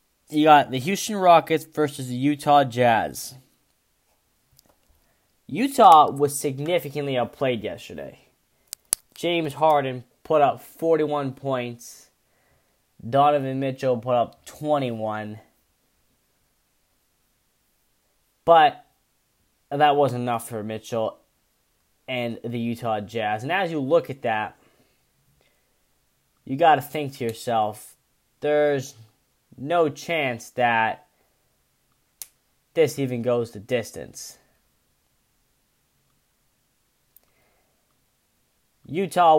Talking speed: 85 wpm